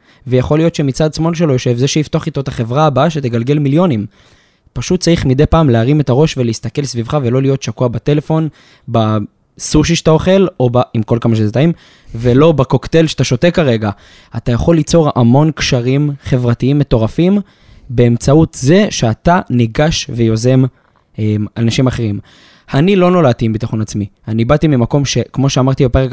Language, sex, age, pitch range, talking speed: Hebrew, male, 20-39, 120-155 Hz, 155 wpm